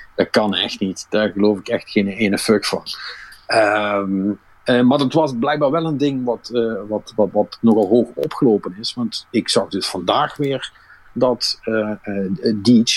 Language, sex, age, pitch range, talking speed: Dutch, male, 50-69, 100-120 Hz, 175 wpm